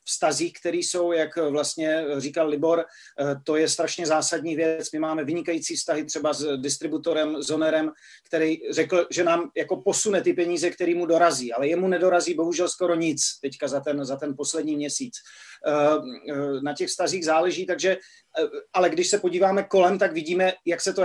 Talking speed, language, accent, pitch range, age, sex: 170 wpm, Czech, native, 155-180 Hz, 40-59, male